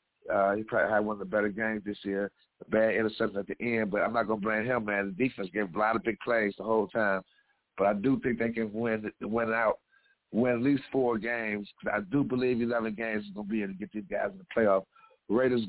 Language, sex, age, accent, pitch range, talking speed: English, male, 50-69, American, 105-125 Hz, 265 wpm